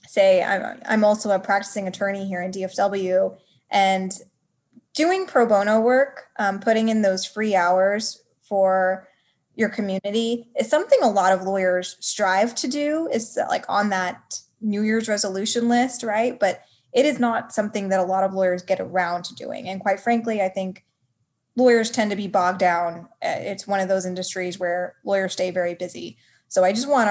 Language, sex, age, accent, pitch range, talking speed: English, female, 10-29, American, 185-225 Hz, 175 wpm